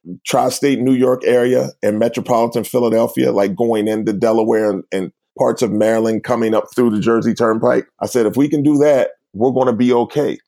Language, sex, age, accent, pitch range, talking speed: English, male, 30-49, American, 105-125 Hz, 195 wpm